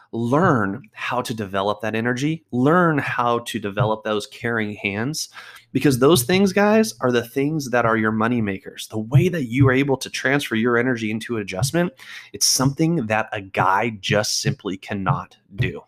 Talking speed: 175 wpm